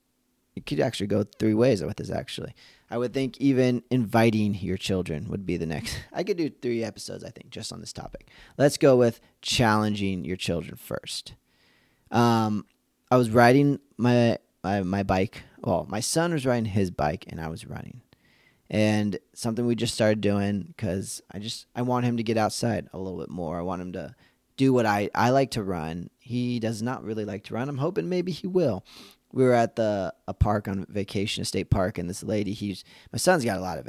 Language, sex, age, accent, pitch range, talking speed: English, male, 20-39, American, 100-120 Hz, 210 wpm